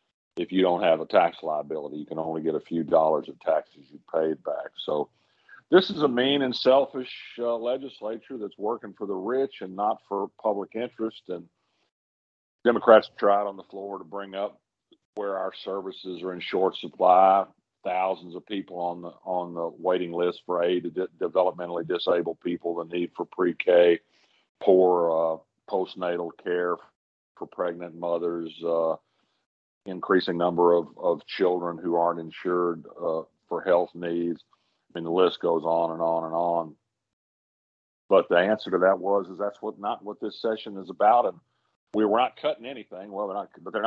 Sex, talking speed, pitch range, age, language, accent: male, 175 wpm, 85-95 Hz, 50-69, English, American